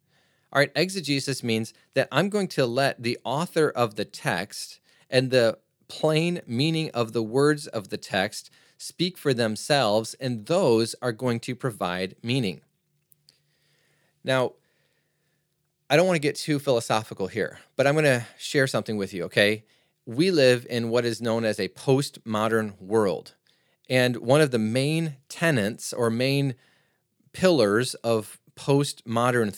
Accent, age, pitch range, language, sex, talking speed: American, 30-49, 110-150 Hz, English, male, 150 wpm